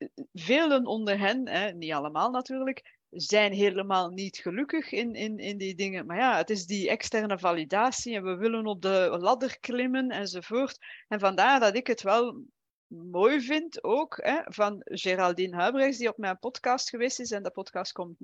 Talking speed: 170 wpm